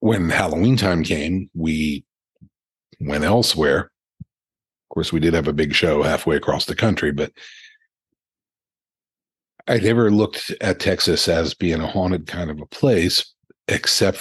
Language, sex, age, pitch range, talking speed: English, male, 50-69, 85-110 Hz, 145 wpm